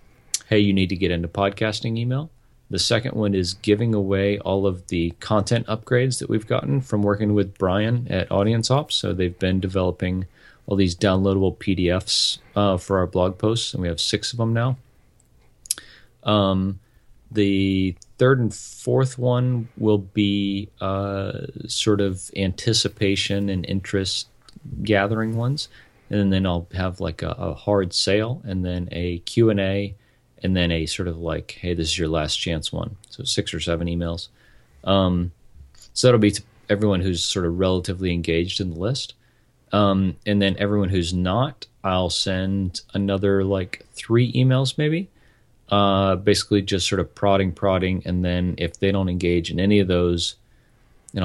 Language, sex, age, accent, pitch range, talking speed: English, male, 40-59, American, 90-110 Hz, 165 wpm